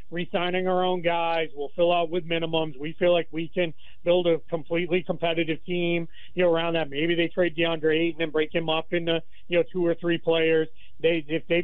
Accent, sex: American, male